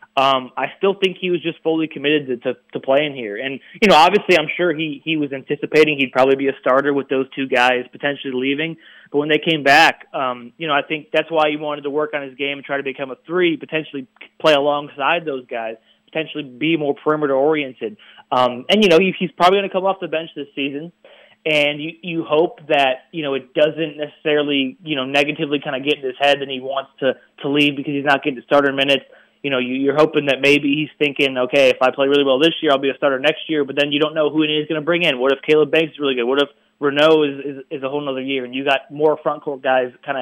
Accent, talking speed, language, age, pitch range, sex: American, 260 wpm, English, 20-39, 135-160 Hz, male